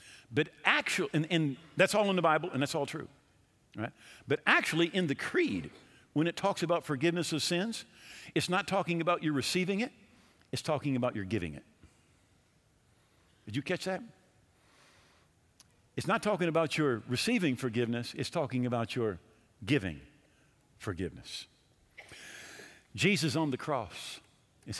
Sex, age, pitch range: male, 50-69, 115-175 Hz